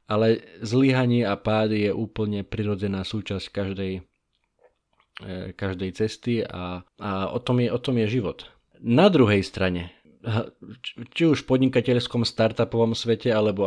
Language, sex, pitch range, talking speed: Slovak, male, 100-115 Hz, 130 wpm